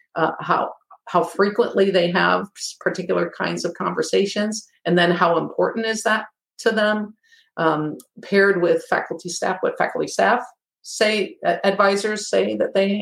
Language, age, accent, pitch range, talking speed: English, 50-69, American, 180-225 Hz, 145 wpm